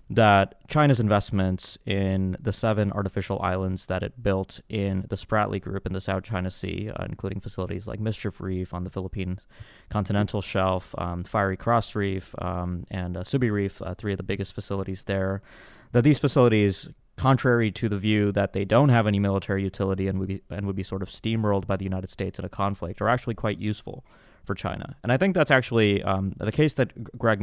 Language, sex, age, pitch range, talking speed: English, male, 20-39, 95-115 Hz, 200 wpm